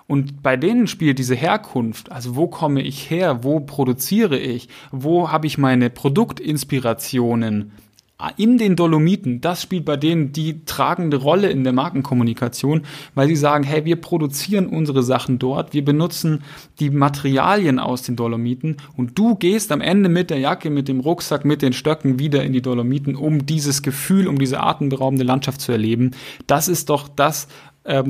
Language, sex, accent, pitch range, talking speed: German, male, German, 130-155 Hz, 170 wpm